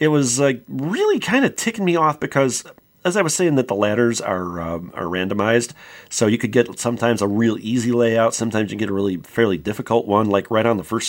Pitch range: 115-145 Hz